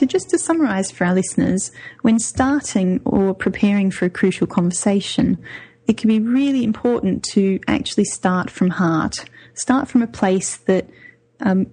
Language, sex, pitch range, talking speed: English, female, 185-220 Hz, 160 wpm